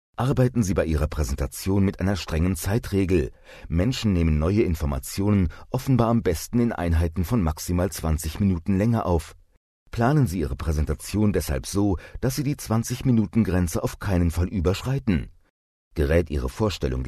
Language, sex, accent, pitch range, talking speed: German, male, German, 80-110 Hz, 145 wpm